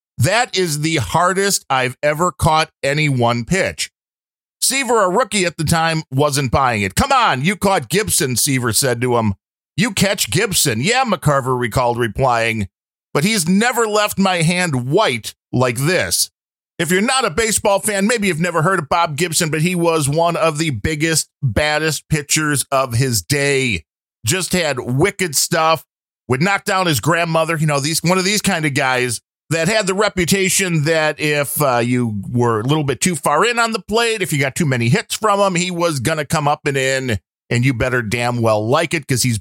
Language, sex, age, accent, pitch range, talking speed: English, male, 40-59, American, 140-190 Hz, 200 wpm